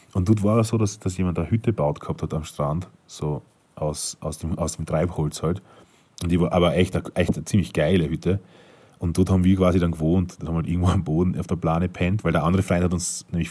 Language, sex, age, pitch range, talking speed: German, male, 30-49, 85-105 Hz, 265 wpm